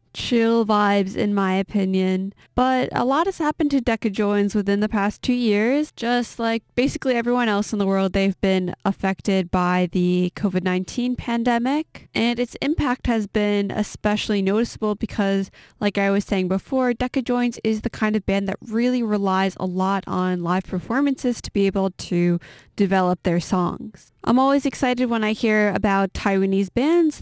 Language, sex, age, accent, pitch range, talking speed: English, female, 20-39, American, 195-235 Hz, 165 wpm